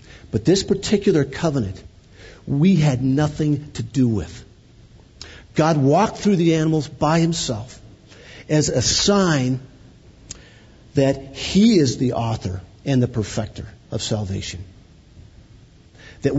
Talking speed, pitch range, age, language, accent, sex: 115 wpm, 105-140 Hz, 50-69, English, American, male